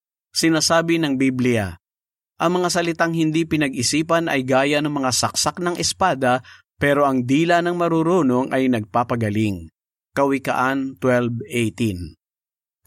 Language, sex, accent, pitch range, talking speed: Filipino, male, native, 120-150 Hz, 110 wpm